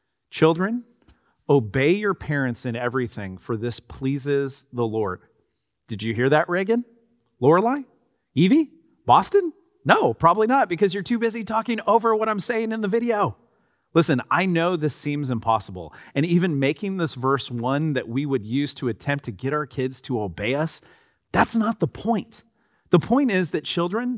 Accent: American